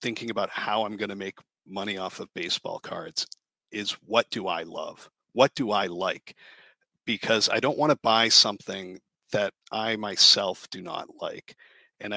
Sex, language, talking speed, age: male, English, 175 wpm, 50-69